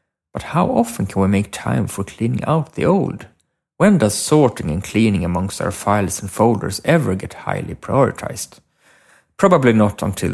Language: English